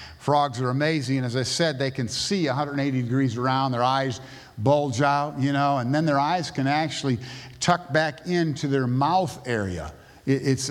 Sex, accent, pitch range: male, American, 125-150 Hz